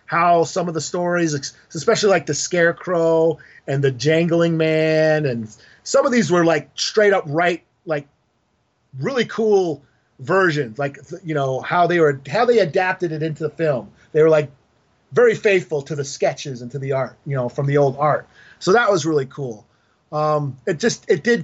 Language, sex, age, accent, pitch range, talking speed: English, male, 30-49, American, 140-180 Hz, 190 wpm